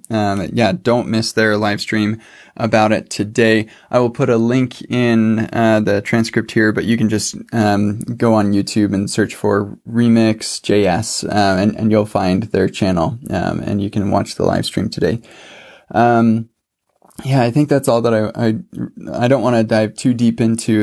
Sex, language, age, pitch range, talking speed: male, English, 20-39, 105-120 Hz, 185 wpm